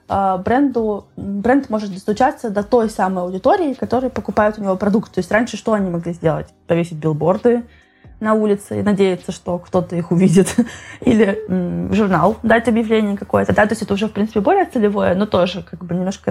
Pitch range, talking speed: 185-220 Hz, 190 wpm